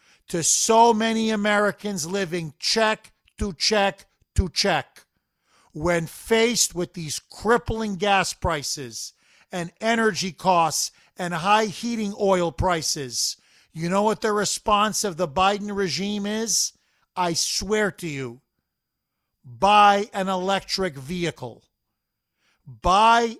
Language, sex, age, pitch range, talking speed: English, male, 50-69, 165-205 Hz, 115 wpm